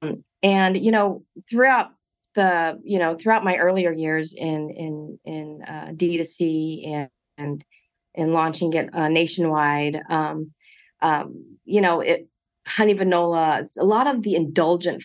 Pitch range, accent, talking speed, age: 160-190 Hz, American, 150 wpm, 40-59